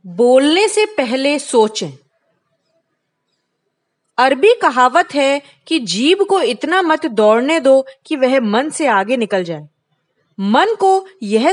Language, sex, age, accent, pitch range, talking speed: Hindi, female, 20-39, native, 230-315 Hz, 125 wpm